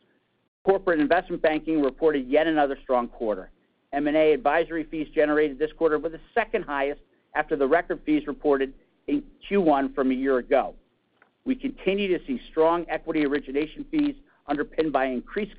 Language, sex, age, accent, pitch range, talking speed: English, male, 50-69, American, 140-175 Hz, 155 wpm